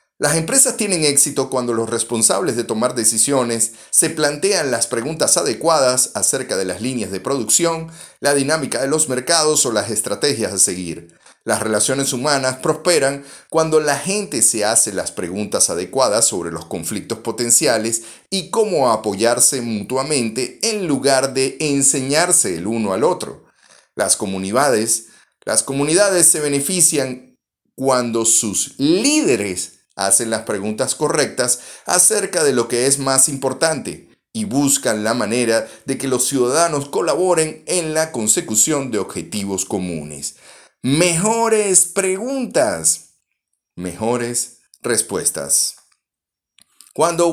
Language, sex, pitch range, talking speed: Spanish, male, 115-170 Hz, 125 wpm